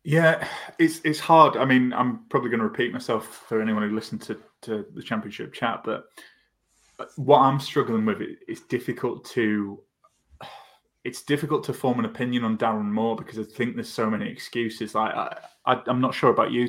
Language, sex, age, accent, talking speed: English, male, 20-39, British, 190 wpm